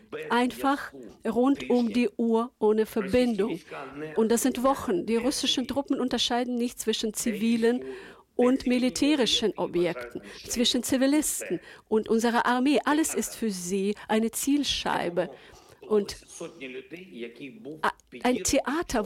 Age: 50-69